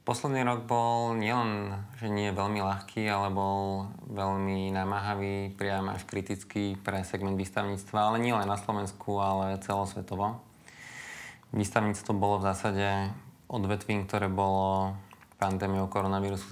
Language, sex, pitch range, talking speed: Slovak, male, 95-105 Hz, 125 wpm